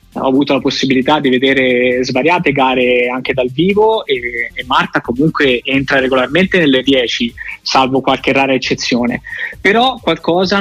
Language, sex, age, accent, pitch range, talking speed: Italian, male, 20-39, native, 130-160 Hz, 140 wpm